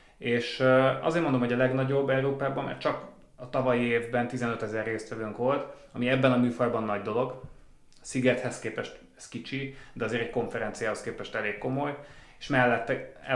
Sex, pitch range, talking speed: male, 110-130 Hz, 155 wpm